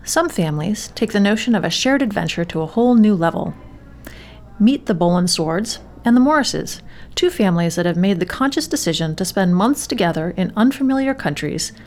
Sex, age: female, 30-49